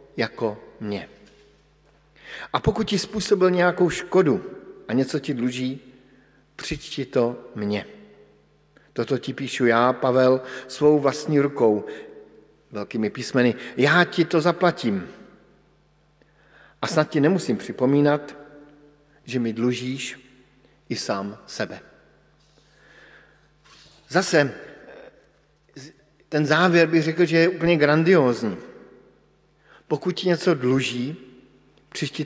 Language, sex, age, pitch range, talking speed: Slovak, male, 50-69, 125-155 Hz, 100 wpm